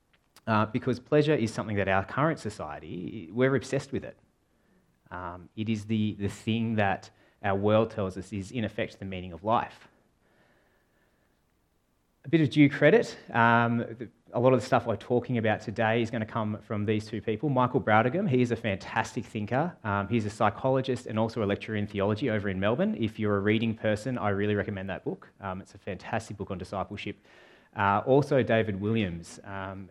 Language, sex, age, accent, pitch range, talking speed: English, male, 20-39, Australian, 95-115 Hz, 195 wpm